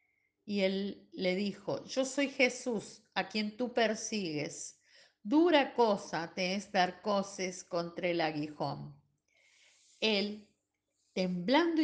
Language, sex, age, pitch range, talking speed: Spanish, female, 50-69, 185-255 Hz, 110 wpm